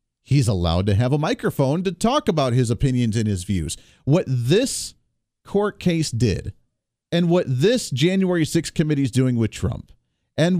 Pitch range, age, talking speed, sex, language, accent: 120-155 Hz, 40-59, 170 wpm, male, English, American